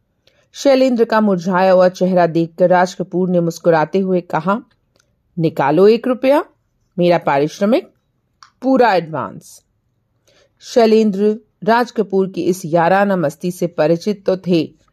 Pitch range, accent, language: 175-235 Hz, native, Hindi